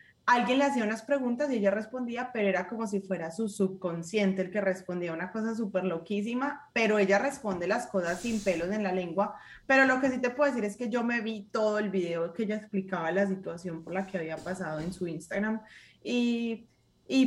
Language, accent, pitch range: Spanish, Colombian, 185-225 Hz